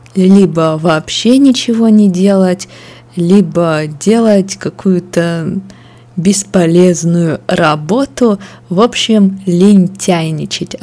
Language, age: Russian, 20-39